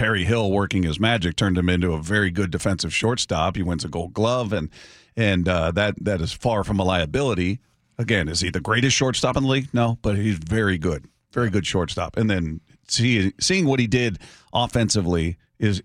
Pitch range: 95-115 Hz